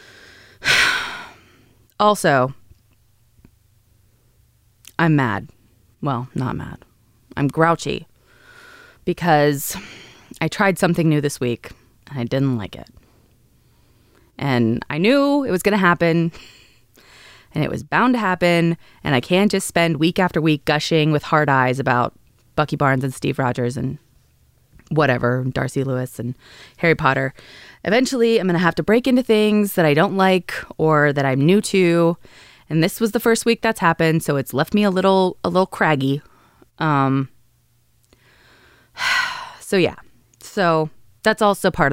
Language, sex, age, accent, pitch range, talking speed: English, female, 20-39, American, 125-185 Hz, 145 wpm